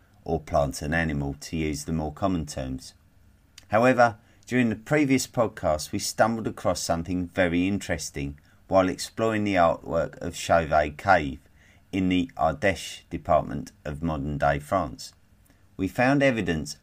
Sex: male